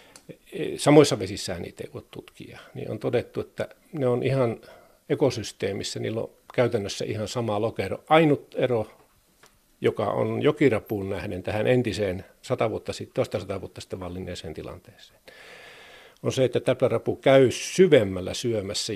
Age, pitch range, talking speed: 50-69, 105-140 Hz, 125 wpm